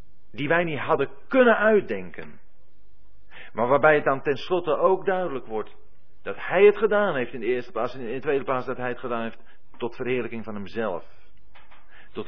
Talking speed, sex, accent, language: 180 wpm, male, Dutch, Dutch